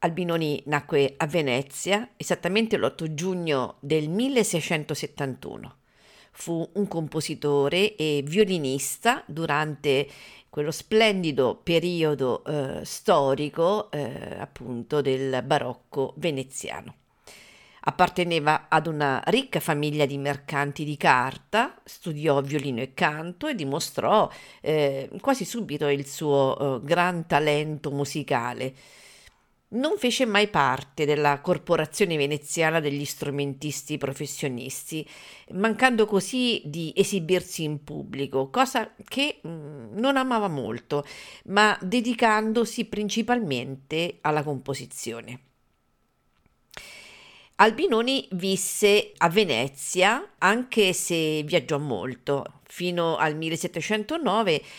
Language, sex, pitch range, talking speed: Italian, female, 140-190 Hz, 95 wpm